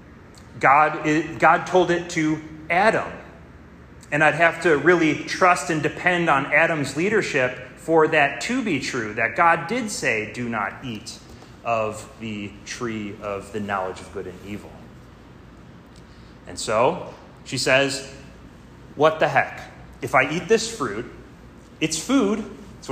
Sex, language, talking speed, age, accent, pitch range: male, English, 140 wpm, 30-49, American, 125-175 Hz